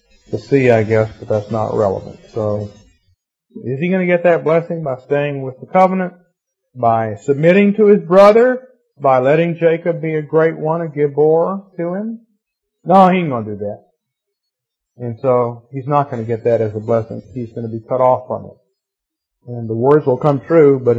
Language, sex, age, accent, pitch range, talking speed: English, male, 40-59, American, 125-170 Hz, 205 wpm